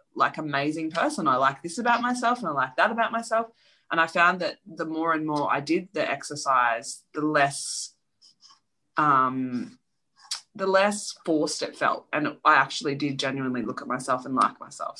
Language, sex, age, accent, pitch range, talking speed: English, female, 20-39, Australian, 135-180 Hz, 180 wpm